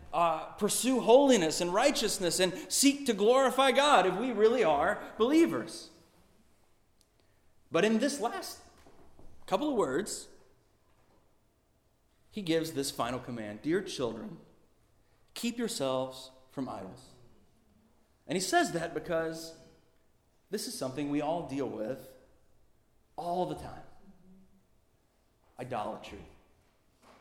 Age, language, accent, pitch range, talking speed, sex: 30-49, English, American, 140-220 Hz, 110 wpm, male